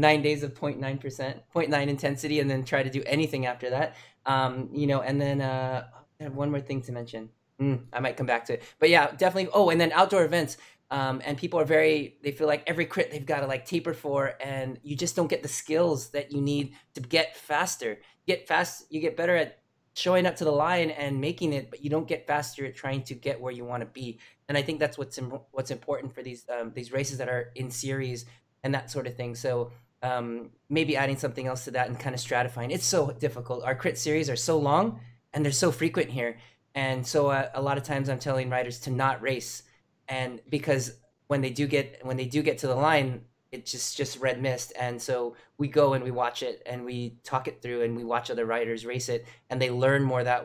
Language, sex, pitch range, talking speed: English, male, 125-145 Hz, 240 wpm